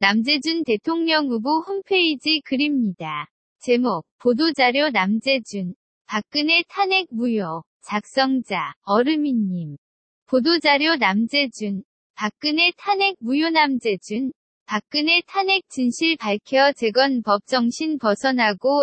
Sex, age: female, 20-39